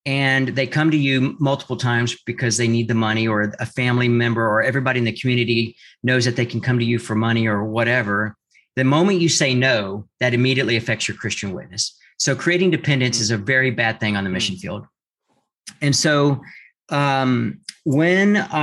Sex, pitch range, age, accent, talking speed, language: male, 115-135 Hz, 40-59, American, 190 wpm, English